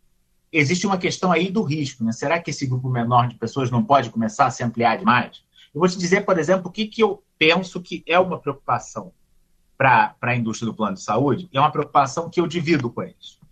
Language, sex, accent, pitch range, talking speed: Portuguese, male, Brazilian, 120-175 Hz, 230 wpm